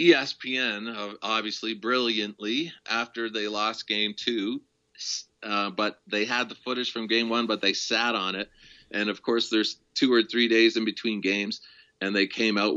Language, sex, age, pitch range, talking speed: English, male, 40-59, 105-135 Hz, 175 wpm